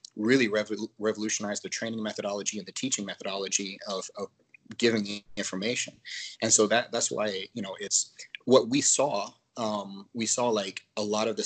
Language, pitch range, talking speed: English, 100-115 Hz, 170 wpm